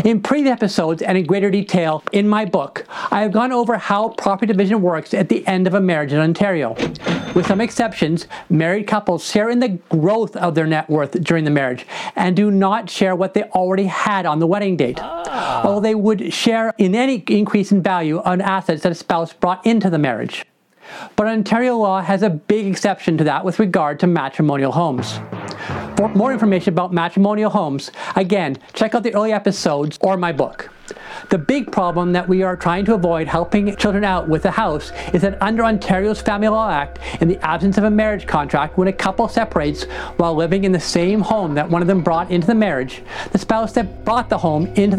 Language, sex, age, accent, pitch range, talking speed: English, male, 40-59, American, 170-215 Hz, 205 wpm